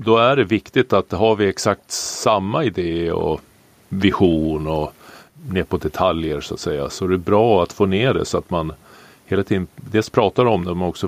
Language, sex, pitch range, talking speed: Swedish, male, 85-105 Hz, 205 wpm